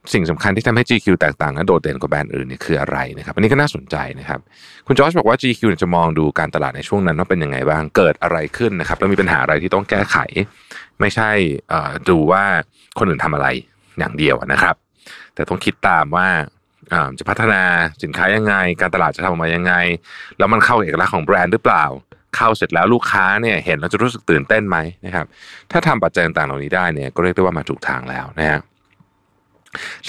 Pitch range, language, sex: 80-105 Hz, Thai, male